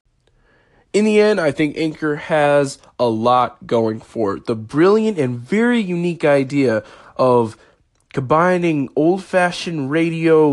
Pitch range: 115-155 Hz